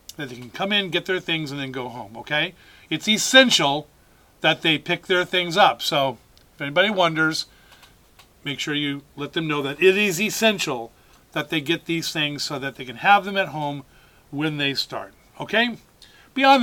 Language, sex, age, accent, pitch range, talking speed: English, male, 40-59, American, 140-185 Hz, 190 wpm